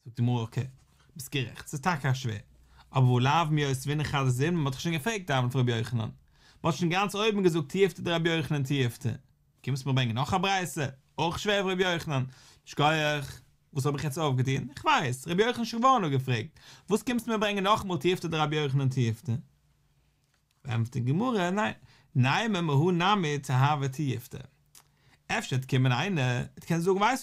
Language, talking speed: English, 60 wpm